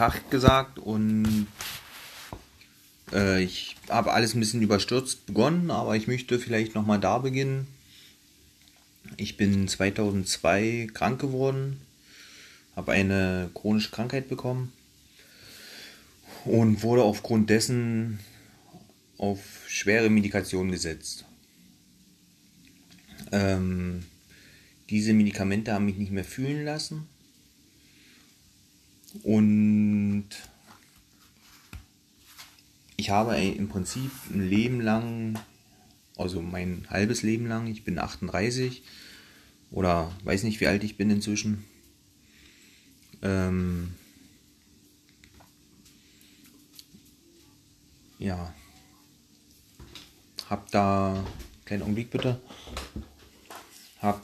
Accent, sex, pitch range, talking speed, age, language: German, male, 95-110 Hz, 85 wpm, 30-49, German